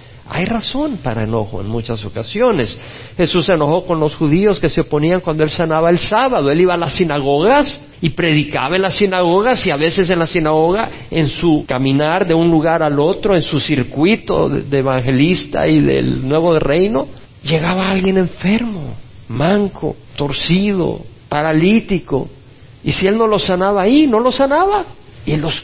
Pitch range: 135-185 Hz